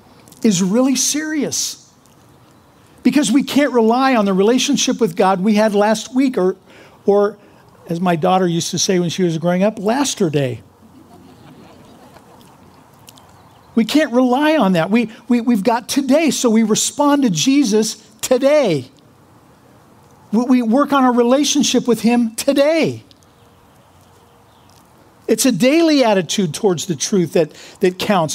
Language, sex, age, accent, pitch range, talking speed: English, male, 50-69, American, 185-250 Hz, 140 wpm